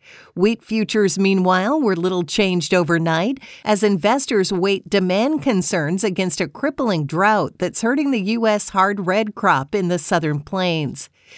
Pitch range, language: 165-210 Hz, English